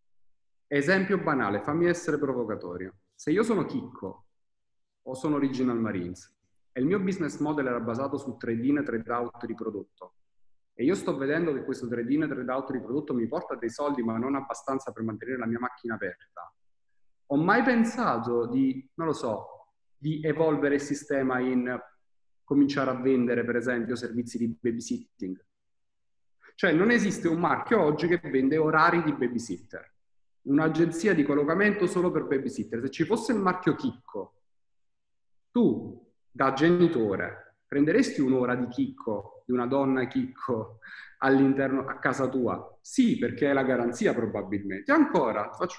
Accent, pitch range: native, 120-155 Hz